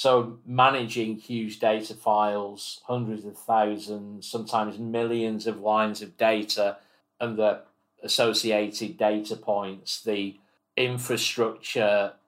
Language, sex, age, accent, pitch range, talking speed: English, male, 40-59, British, 105-115 Hz, 105 wpm